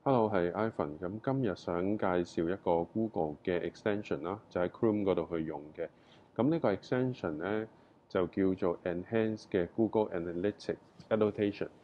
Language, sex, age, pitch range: Chinese, male, 20-39, 90-115 Hz